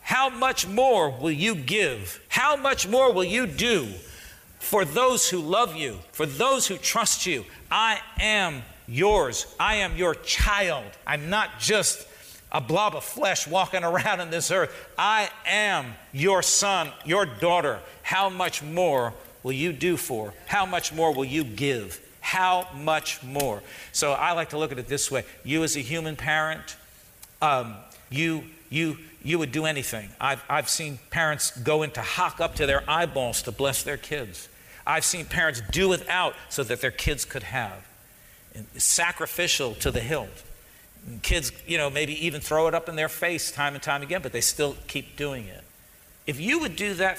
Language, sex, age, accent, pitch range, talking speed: English, male, 50-69, American, 140-185 Hz, 180 wpm